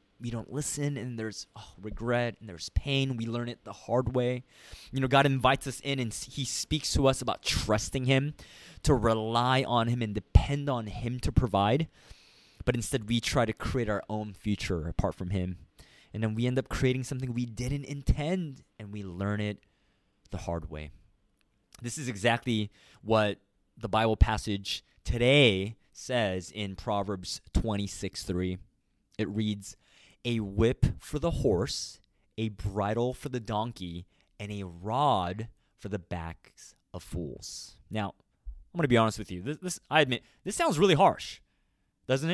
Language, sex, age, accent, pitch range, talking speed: English, male, 20-39, American, 100-130 Hz, 170 wpm